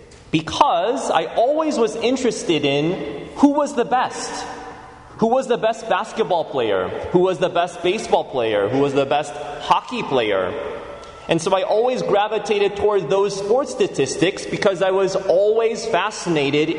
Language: English